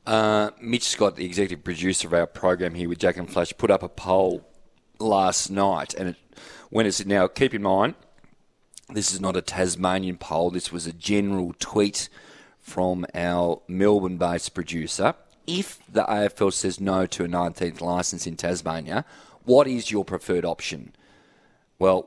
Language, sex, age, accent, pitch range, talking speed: English, male, 30-49, Australian, 90-105 Hz, 165 wpm